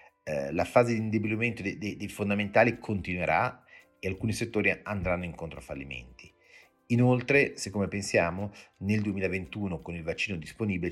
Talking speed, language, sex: 125 wpm, Italian, male